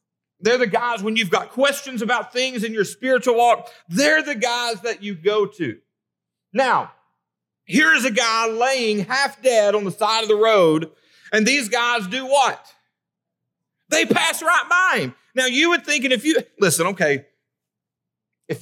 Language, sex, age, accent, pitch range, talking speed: English, male, 40-59, American, 160-235 Hz, 170 wpm